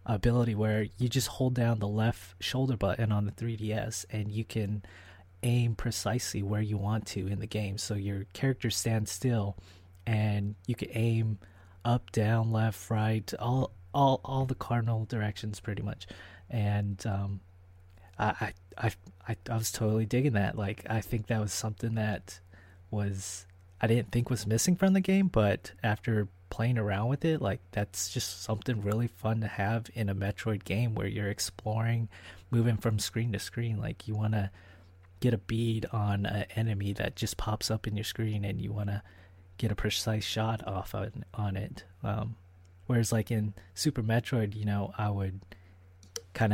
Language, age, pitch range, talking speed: English, 20-39, 100-115 Hz, 180 wpm